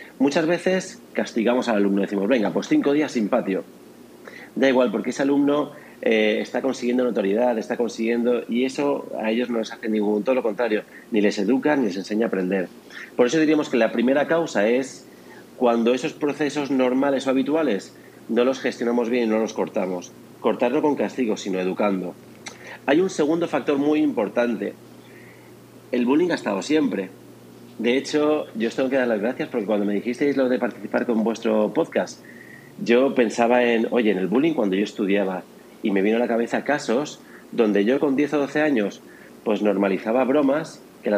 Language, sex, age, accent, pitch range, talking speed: Spanish, male, 40-59, Spanish, 105-140 Hz, 190 wpm